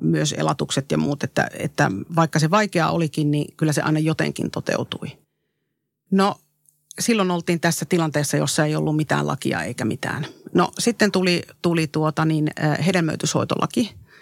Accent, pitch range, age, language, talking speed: native, 150-180 Hz, 40-59, Finnish, 140 wpm